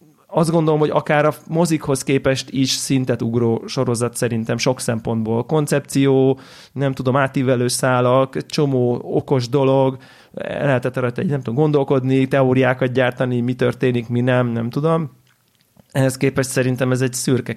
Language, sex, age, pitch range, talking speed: Hungarian, male, 30-49, 125-150 Hz, 140 wpm